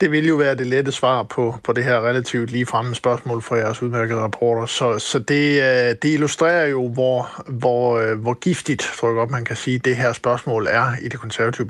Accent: native